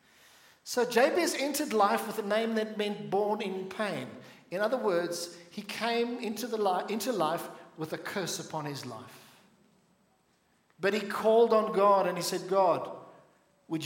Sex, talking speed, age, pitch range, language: male, 165 wpm, 50-69, 185-240 Hz, English